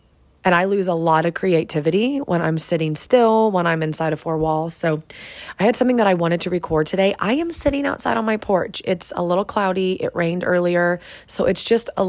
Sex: female